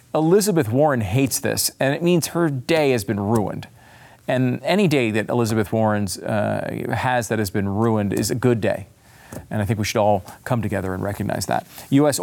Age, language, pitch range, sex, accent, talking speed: 40-59, English, 105-150 Hz, male, American, 195 wpm